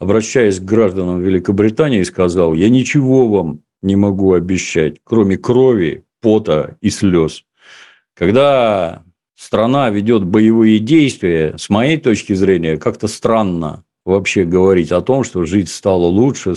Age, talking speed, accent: 50-69, 125 wpm, native